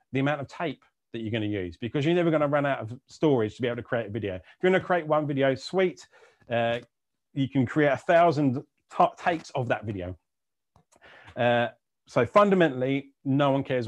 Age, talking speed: 30-49, 205 wpm